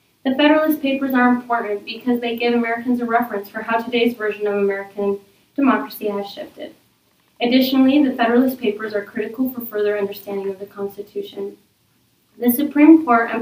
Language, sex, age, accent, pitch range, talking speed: English, female, 10-29, American, 205-240 Hz, 160 wpm